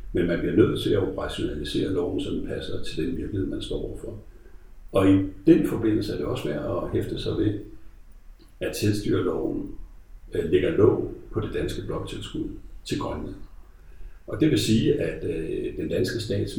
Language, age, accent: Danish, 60-79, native